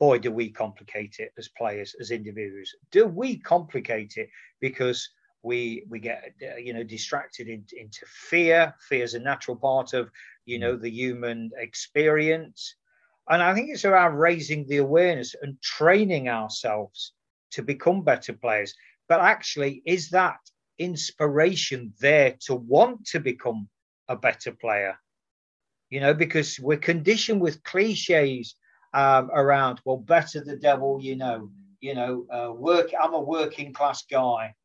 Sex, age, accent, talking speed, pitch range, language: male, 40-59, British, 150 wpm, 125-180 Hz, English